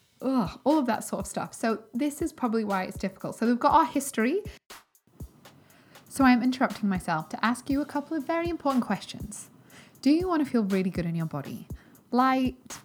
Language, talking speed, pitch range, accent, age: English, 205 wpm, 185-260 Hz, British, 20-39